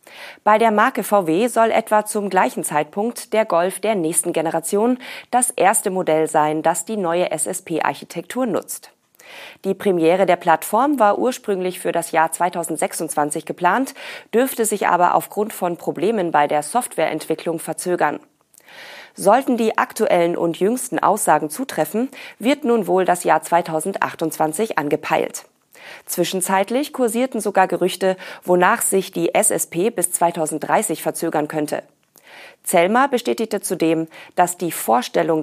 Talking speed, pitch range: 130 wpm, 160-215 Hz